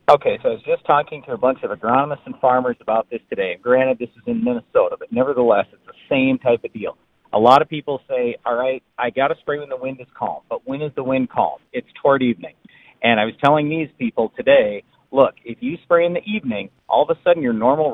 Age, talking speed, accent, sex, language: 40-59, 250 wpm, American, male, English